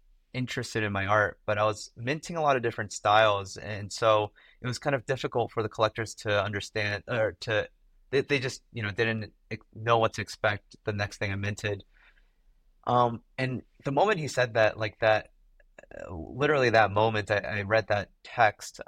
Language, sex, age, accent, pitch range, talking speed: English, male, 30-49, American, 100-120 Hz, 190 wpm